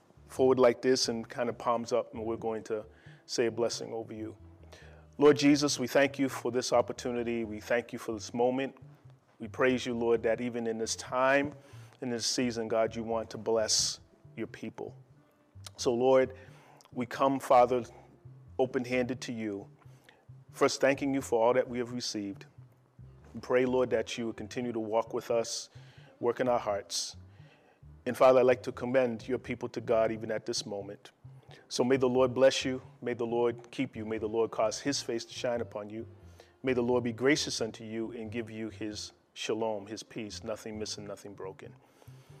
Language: English